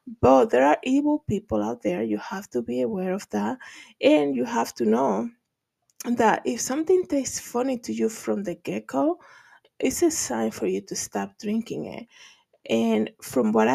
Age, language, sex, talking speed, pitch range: 20-39, English, female, 180 wpm, 185-235 Hz